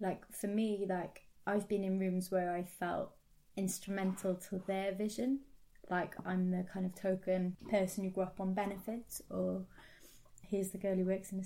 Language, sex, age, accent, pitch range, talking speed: English, female, 20-39, British, 185-205 Hz, 185 wpm